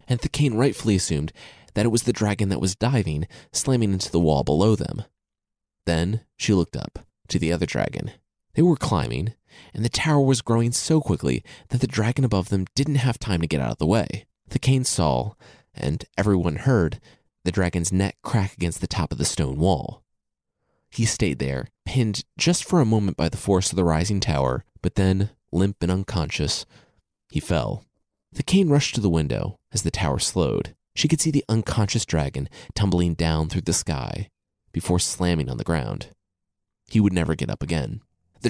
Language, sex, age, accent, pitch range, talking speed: English, male, 30-49, American, 85-125 Hz, 190 wpm